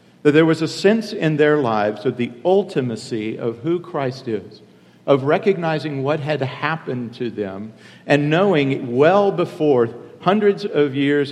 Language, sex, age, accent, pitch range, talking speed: English, male, 50-69, American, 125-155 Hz, 155 wpm